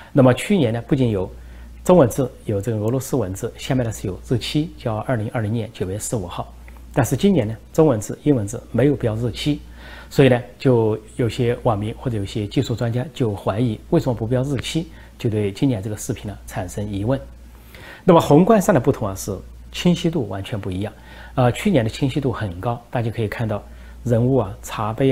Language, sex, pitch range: Chinese, male, 105-135 Hz